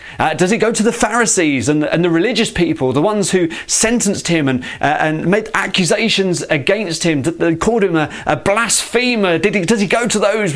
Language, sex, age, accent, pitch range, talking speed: English, male, 30-49, British, 130-185 Hz, 215 wpm